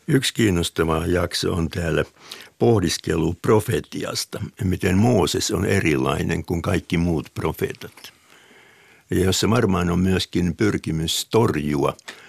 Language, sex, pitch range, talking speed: Finnish, male, 80-105 Hz, 105 wpm